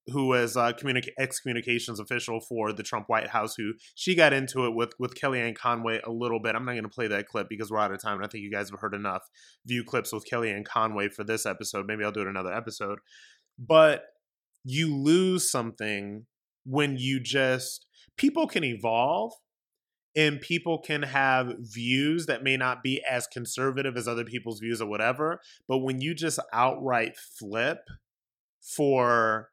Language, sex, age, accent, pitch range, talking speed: English, male, 20-39, American, 110-135 Hz, 185 wpm